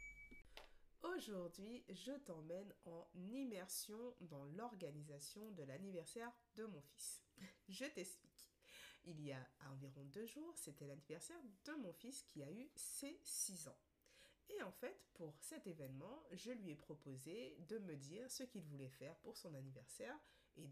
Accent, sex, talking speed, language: French, female, 150 wpm, French